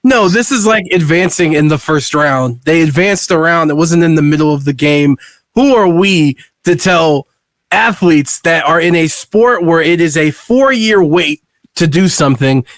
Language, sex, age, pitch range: English, male, 20-39, 155-215 Hz